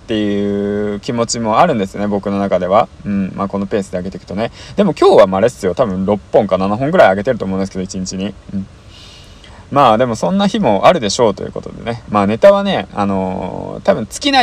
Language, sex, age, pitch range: Japanese, male, 20-39, 95-155 Hz